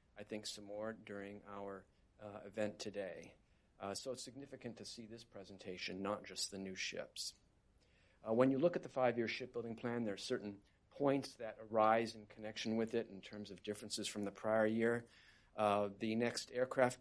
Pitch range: 105-120 Hz